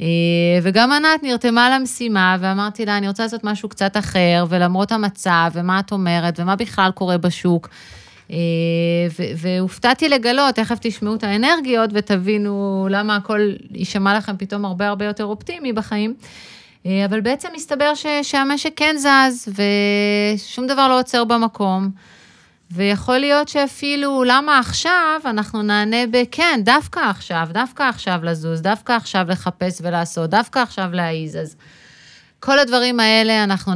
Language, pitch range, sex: Hebrew, 175-225 Hz, female